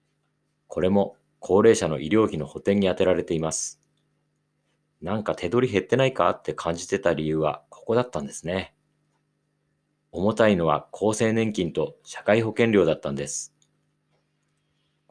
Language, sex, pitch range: Japanese, male, 85-115 Hz